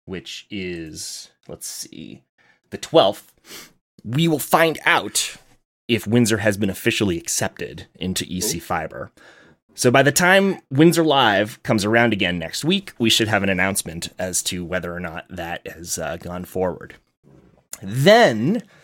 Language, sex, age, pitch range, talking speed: English, male, 30-49, 95-135 Hz, 145 wpm